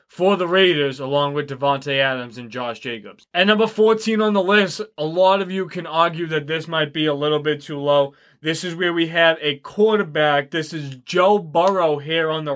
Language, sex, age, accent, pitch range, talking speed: English, male, 20-39, American, 145-180 Hz, 215 wpm